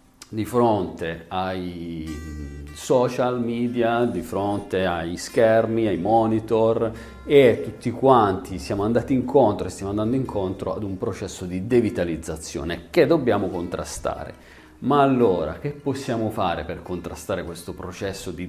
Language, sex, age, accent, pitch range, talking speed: Italian, male, 40-59, native, 90-115 Hz, 125 wpm